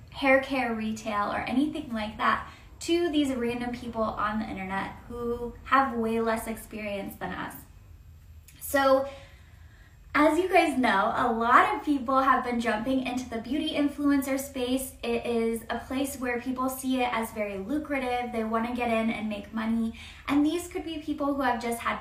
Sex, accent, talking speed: female, American, 180 wpm